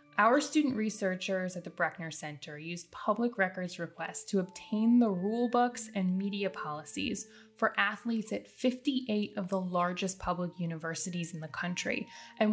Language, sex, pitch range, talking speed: English, female, 180-245 Hz, 155 wpm